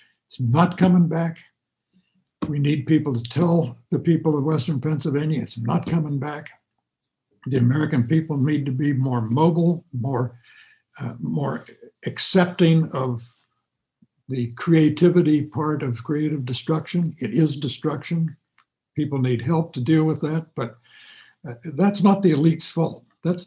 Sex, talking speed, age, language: male, 140 wpm, 60-79, English